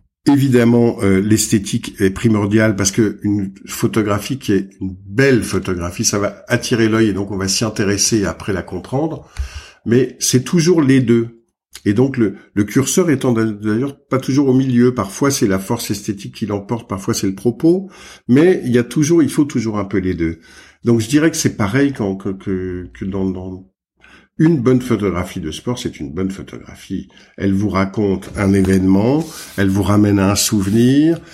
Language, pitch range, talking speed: French, 100-130 Hz, 190 wpm